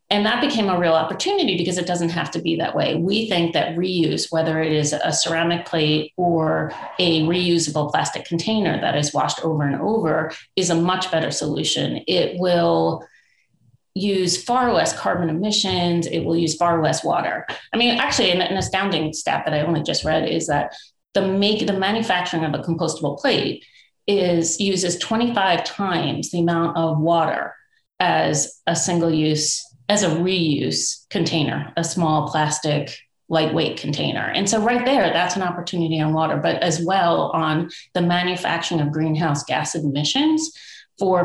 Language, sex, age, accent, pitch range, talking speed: English, female, 30-49, American, 160-195 Hz, 165 wpm